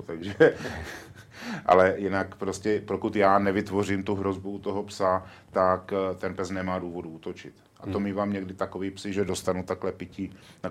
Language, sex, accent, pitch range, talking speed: Czech, male, native, 90-100 Hz, 170 wpm